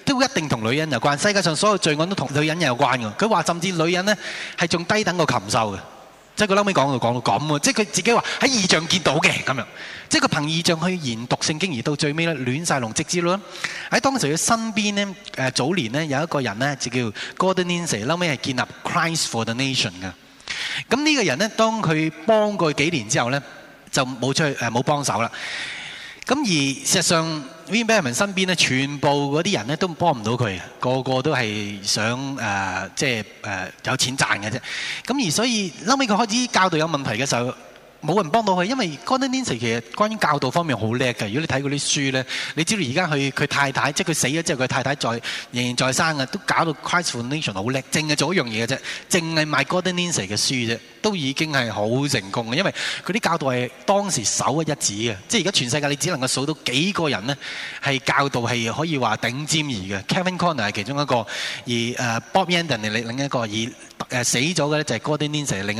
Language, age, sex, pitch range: Chinese, 20-39, male, 125-175 Hz